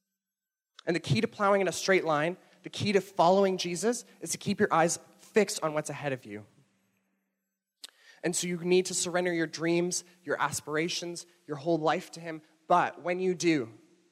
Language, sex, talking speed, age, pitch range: English, male, 185 wpm, 20-39, 155-185 Hz